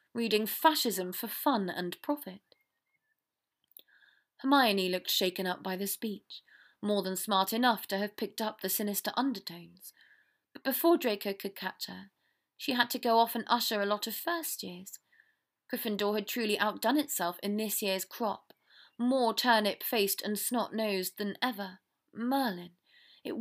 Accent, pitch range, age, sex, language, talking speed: British, 195-265 Hz, 30-49, female, English, 150 wpm